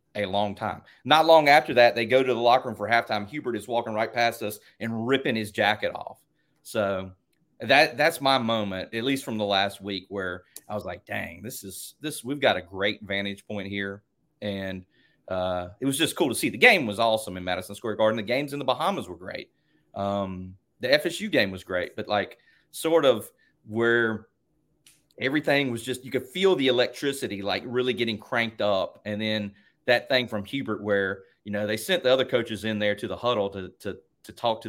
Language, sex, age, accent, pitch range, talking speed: English, male, 30-49, American, 100-130 Hz, 210 wpm